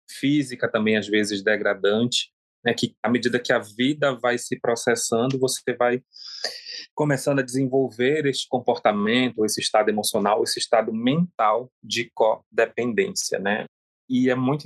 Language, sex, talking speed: Portuguese, male, 140 wpm